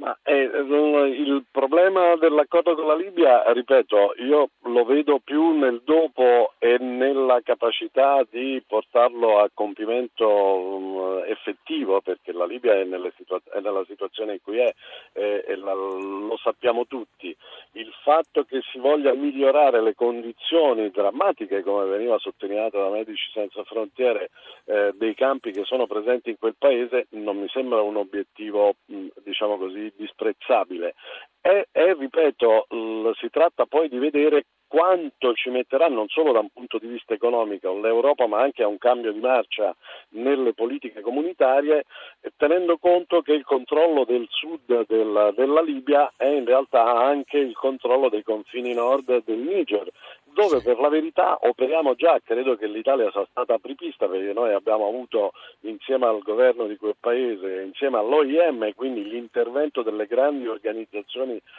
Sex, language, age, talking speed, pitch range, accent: male, Italian, 50-69, 140 wpm, 115-170 Hz, native